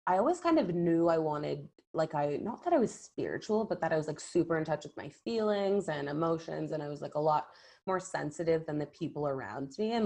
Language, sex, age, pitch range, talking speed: English, female, 20-39, 145-180 Hz, 245 wpm